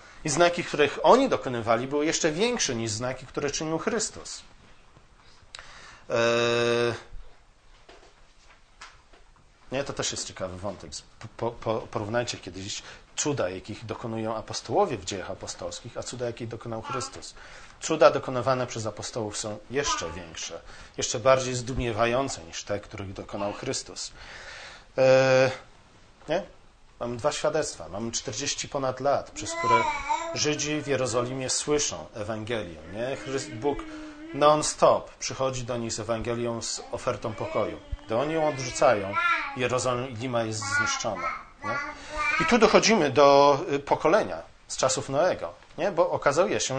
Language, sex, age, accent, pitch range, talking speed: Polish, male, 40-59, native, 115-150 Hz, 120 wpm